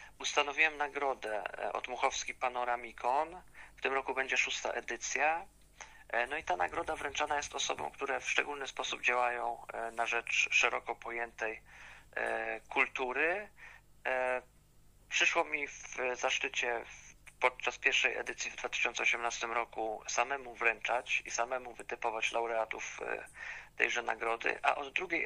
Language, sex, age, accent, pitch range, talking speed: Polish, male, 40-59, native, 110-130 Hz, 115 wpm